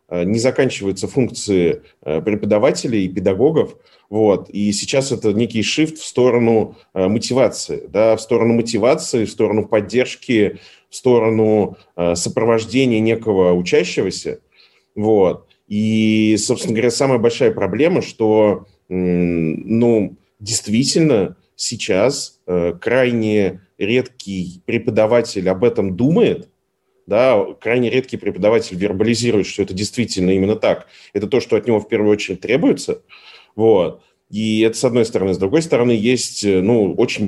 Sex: male